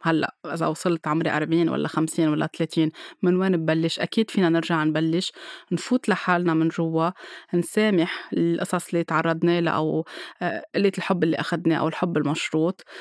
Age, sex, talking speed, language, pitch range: 20-39, female, 155 wpm, Arabic, 165-190 Hz